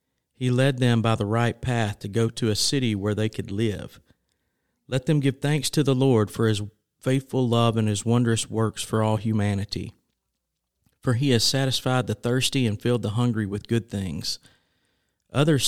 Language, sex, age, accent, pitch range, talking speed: English, male, 50-69, American, 105-125 Hz, 185 wpm